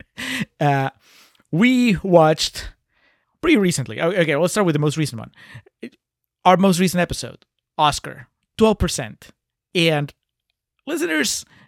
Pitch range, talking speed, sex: 135-175 Hz, 120 wpm, male